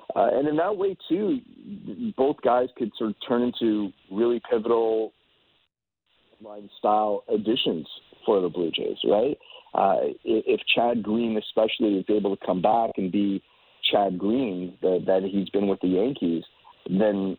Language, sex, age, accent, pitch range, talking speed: English, male, 40-59, American, 95-115 Hz, 150 wpm